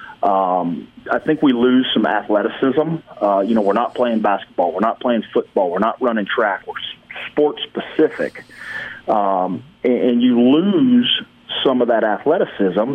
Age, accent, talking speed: 40-59, American, 160 wpm